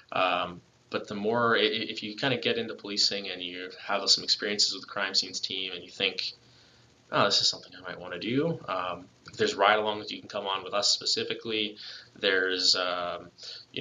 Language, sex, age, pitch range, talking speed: English, male, 20-39, 95-110 Hz, 205 wpm